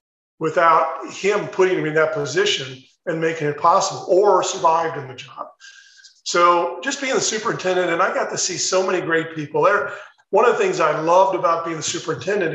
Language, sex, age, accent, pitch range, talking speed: English, male, 40-59, American, 160-195 Hz, 195 wpm